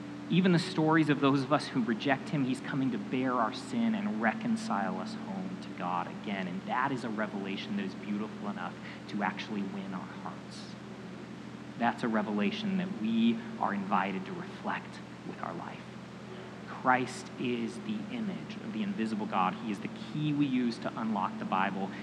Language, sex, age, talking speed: English, male, 30-49, 185 wpm